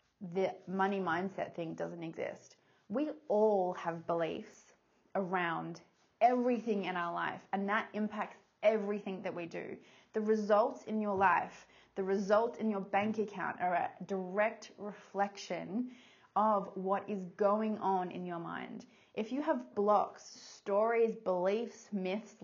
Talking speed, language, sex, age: 140 wpm, English, female, 20-39